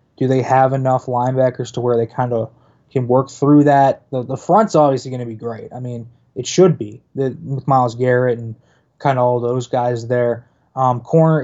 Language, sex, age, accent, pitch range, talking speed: English, male, 20-39, American, 125-150 Hz, 210 wpm